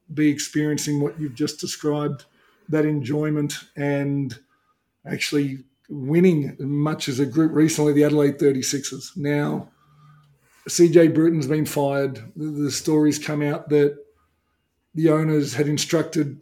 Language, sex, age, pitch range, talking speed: English, male, 50-69, 145-155 Hz, 120 wpm